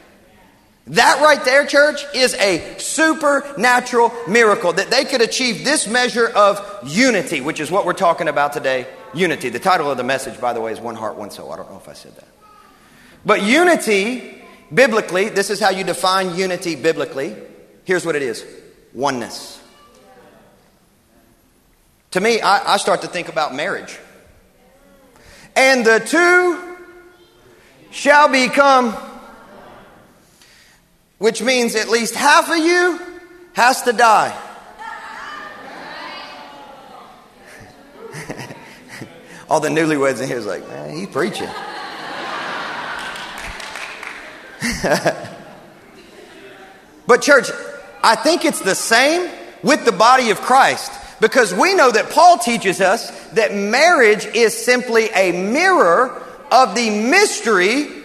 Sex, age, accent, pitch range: male, 40-59, American, 200-305 Hz